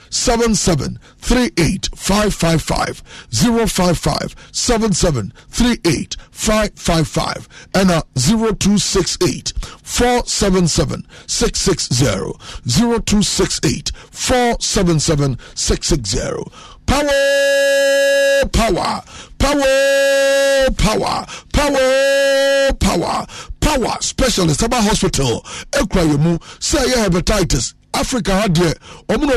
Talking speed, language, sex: 85 wpm, English, male